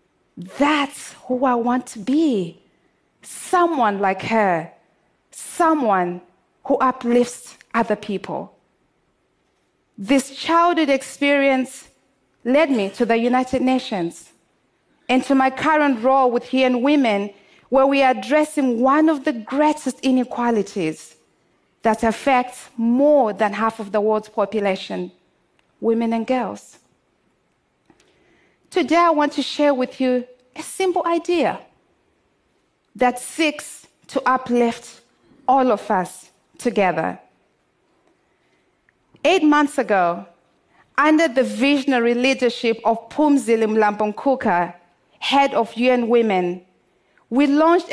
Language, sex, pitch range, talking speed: English, female, 220-285 Hz, 110 wpm